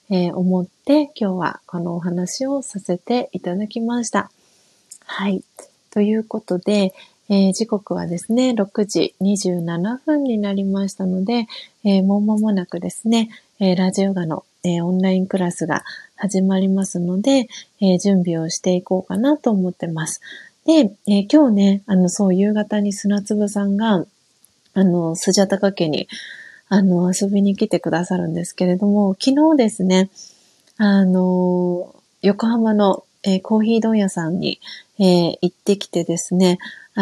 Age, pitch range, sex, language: 30-49, 185-220 Hz, female, Japanese